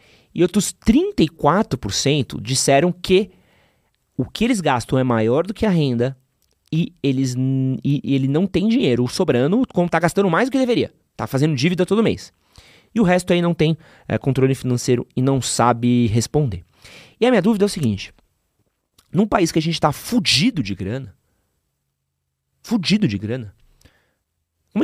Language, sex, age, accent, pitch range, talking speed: Portuguese, male, 30-49, Brazilian, 100-155 Hz, 165 wpm